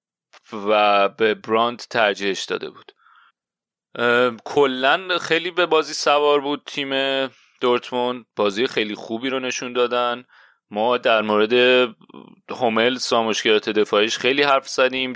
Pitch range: 105-130 Hz